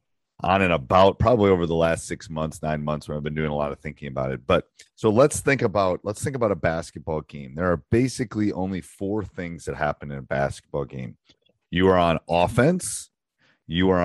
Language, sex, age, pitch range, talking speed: English, male, 40-59, 80-105 Hz, 215 wpm